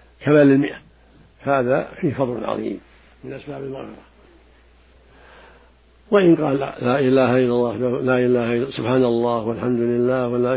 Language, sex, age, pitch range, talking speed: Arabic, male, 60-79, 105-135 Hz, 135 wpm